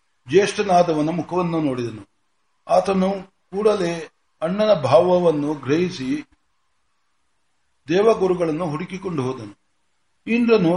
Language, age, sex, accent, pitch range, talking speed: Kannada, 60-79, male, native, 150-185 Hz, 65 wpm